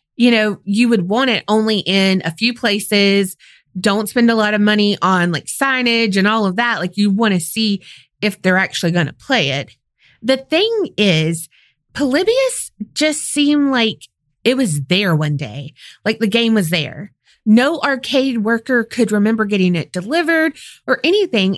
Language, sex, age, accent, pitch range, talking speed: English, female, 20-39, American, 200-260 Hz, 175 wpm